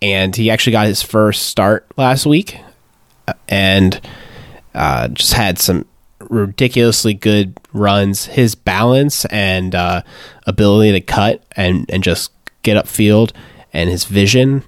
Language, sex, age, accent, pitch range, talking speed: English, male, 20-39, American, 95-120 Hz, 130 wpm